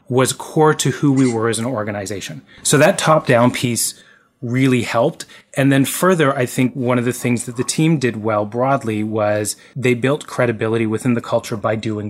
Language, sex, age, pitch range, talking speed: English, male, 30-49, 115-130 Hz, 200 wpm